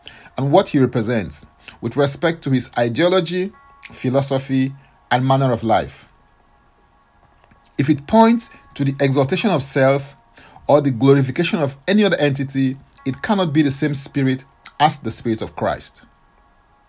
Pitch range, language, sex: 130-175 Hz, English, male